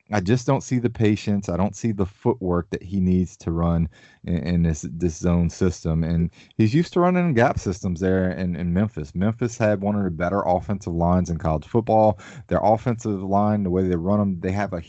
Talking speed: 220 wpm